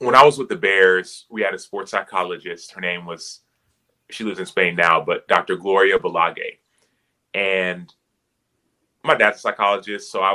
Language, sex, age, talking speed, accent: English, male, 30-49, 175 wpm, American